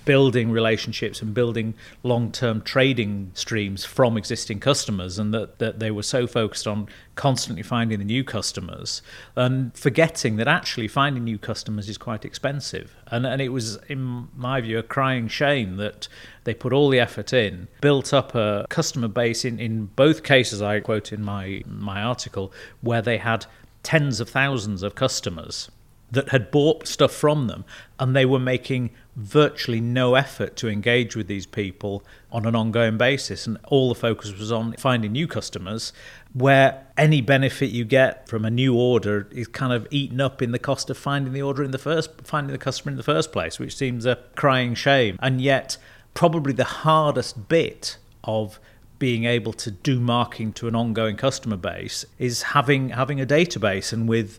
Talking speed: 180 wpm